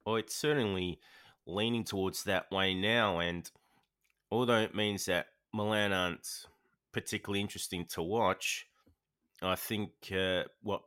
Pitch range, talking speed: 85-105 Hz, 125 wpm